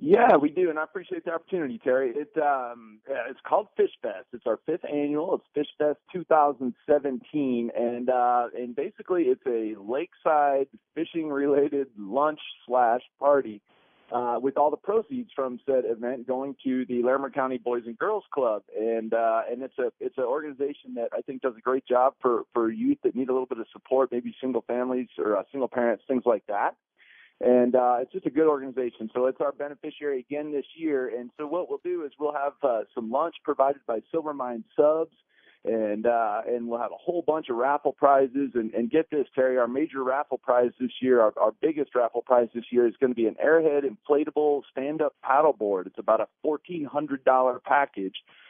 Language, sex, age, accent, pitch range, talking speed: English, male, 40-59, American, 120-150 Hz, 200 wpm